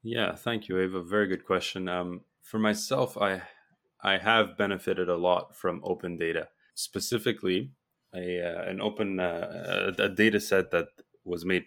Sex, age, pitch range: male, 20-39, 85-100 Hz